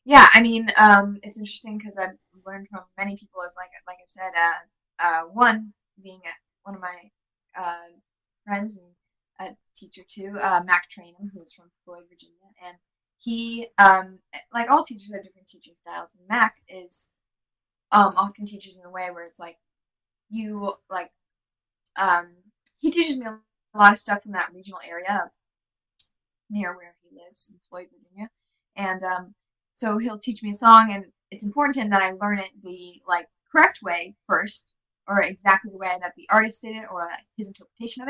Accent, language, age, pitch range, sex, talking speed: American, English, 10-29, 180-215 Hz, female, 185 wpm